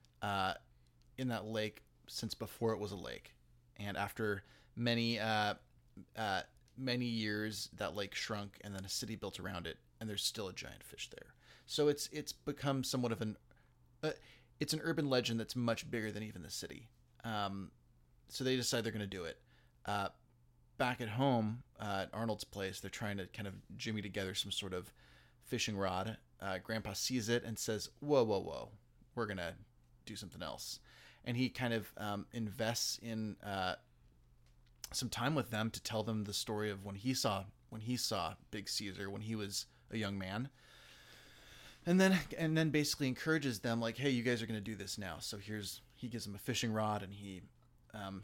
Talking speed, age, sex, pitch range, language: 195 wpm, 30-49, male, 95-120 Hz, English